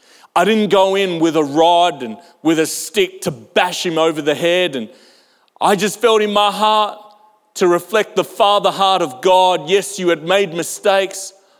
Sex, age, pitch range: male, 30-49, 165-205 Hz